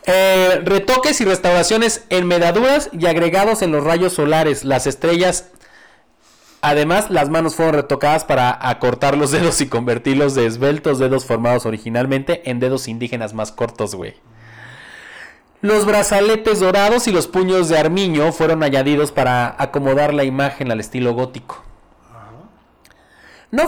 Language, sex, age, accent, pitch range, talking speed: Spanish, male, 30-49, Mexican, 135-180 Hz, 135 wpm